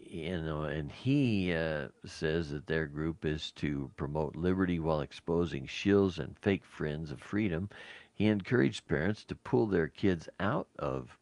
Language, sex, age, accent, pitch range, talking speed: English, male, 60-79, American, 75-90 Hz, 150 wpm